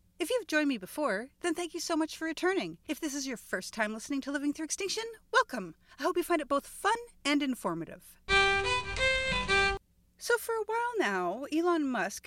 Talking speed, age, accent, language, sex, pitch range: 195 wpm, 40-59, American, English, female, 215-310 Hz